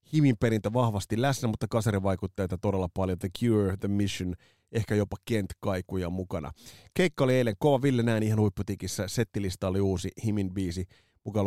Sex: male